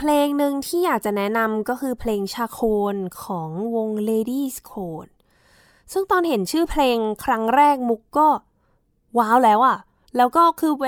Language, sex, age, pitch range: Thai, female, 10-29, 190-250 Hz